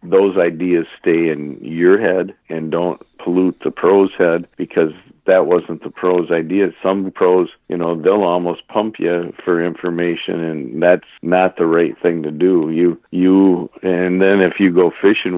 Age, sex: 50-69, male